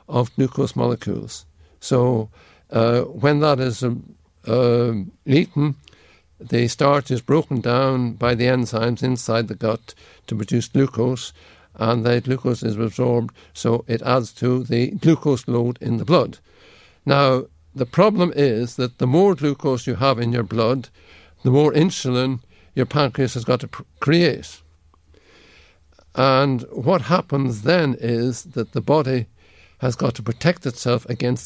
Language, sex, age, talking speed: English, male, 60-79, 145 wpm